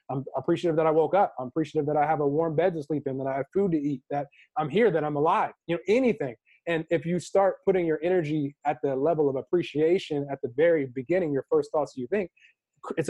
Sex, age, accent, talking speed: male, 20-39, American, 245 wpm